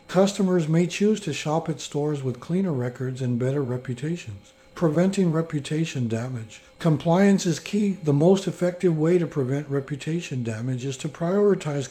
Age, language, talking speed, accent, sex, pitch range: 60-79, English, 150 wpm, American, male, 130-170 Hz